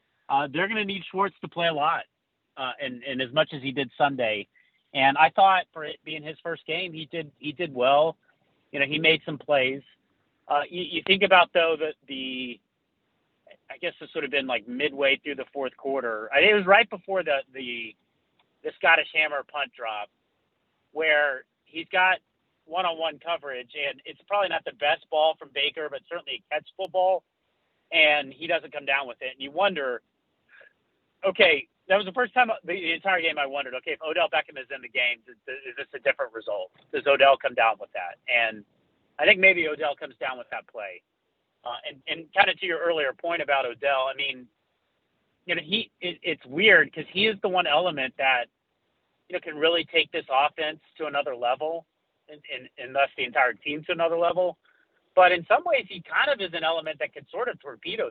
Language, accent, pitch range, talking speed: English, American, 140-180 Hz, 210 wpm